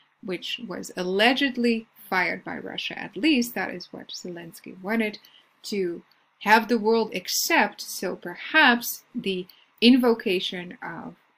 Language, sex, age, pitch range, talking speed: English, female, 30-49, 185-235 Hz, 120 wpm